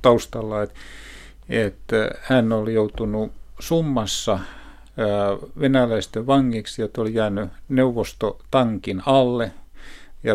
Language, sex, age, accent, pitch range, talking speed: Finnish, male, 50-69, native, 95-120 Hz, 85 wpm